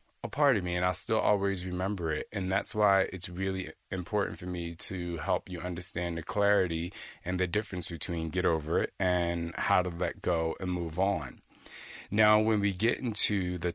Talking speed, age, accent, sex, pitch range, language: 190 wpm, 30-49, American, male, 90-105 Hz, English